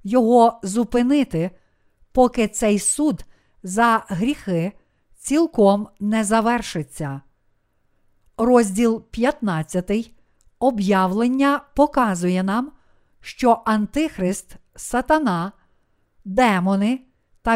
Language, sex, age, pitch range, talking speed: Ukrainian, female, 50-69, 190-250 Hz, 70 wpm